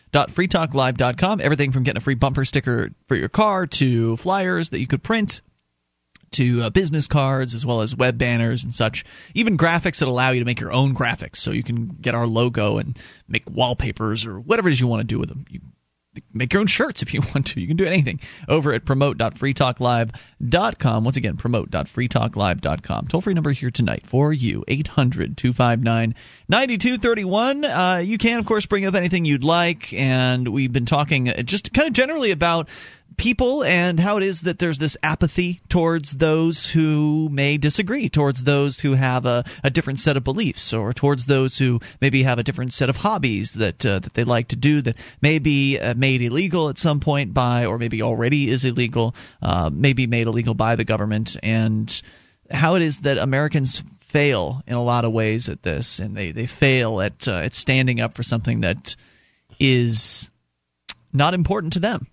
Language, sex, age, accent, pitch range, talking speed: English, male, 30-49, American, 120-160 Hz, 190 wpm